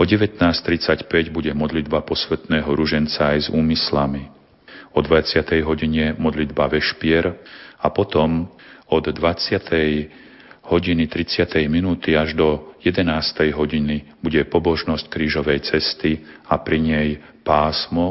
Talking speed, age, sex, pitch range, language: 105 wpm, 40-59, male, 75-85 Hz, Slovak